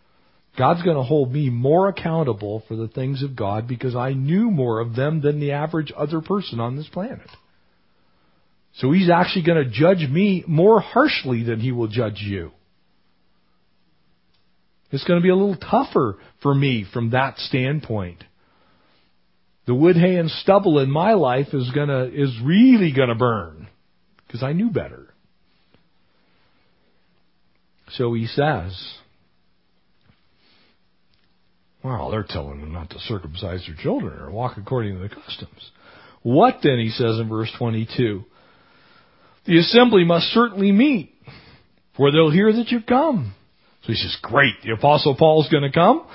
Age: 40-59